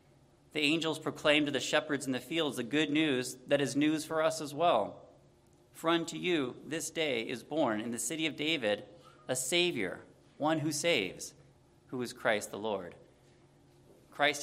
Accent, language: American, English